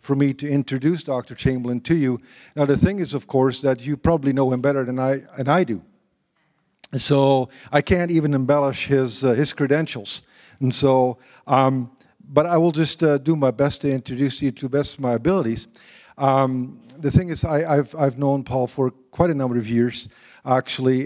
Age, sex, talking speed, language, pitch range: 50-69, male, 200 wpm, English, 125-140 Hz